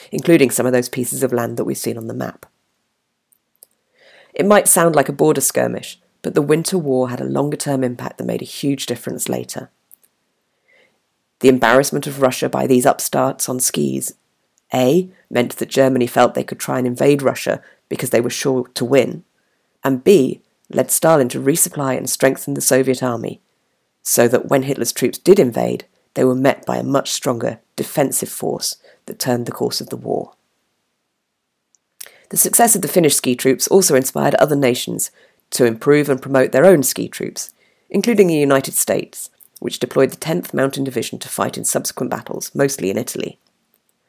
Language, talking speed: English, 175 wpm